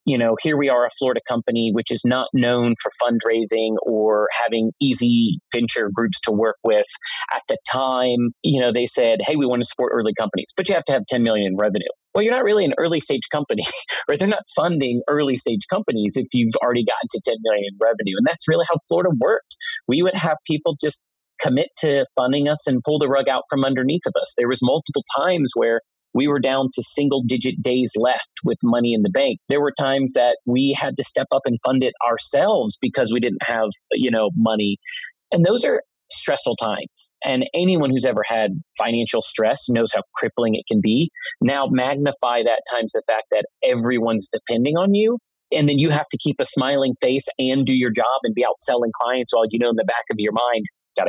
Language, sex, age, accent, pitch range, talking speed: English, male, 30-49, American, 115-145 Hz, 220 wpm